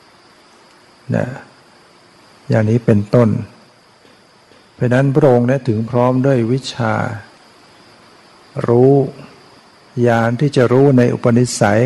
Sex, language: male, Thai